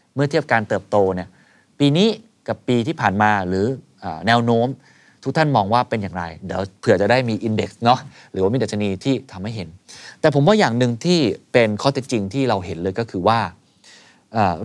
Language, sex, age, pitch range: Thai, male, 20-39, 100-130 Hz